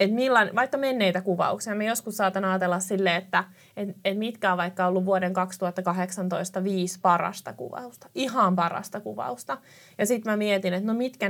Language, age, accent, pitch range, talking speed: Finnish, 30-49, native, 185-225 Hz, 170 wpm